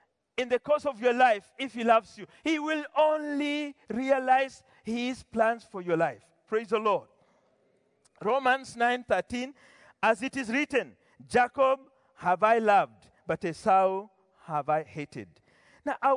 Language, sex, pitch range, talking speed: English, male, 220-275 Hz, 145 wpm